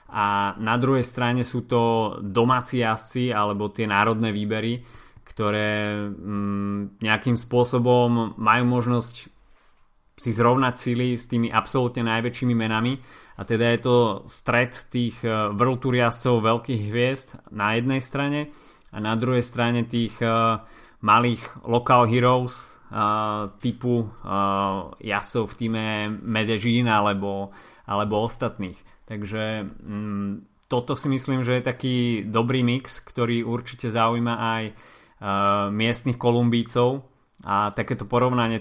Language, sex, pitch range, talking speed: Slovak, male, 105-120 Hz, 120 wpm